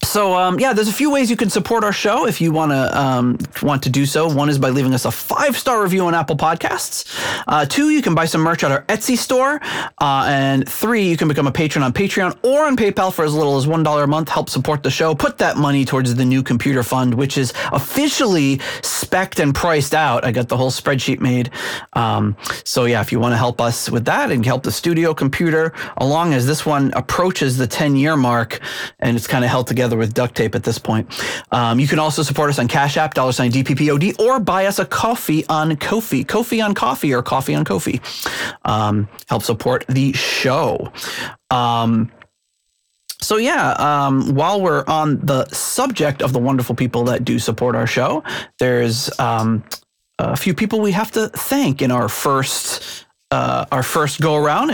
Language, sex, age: English, male, 30-49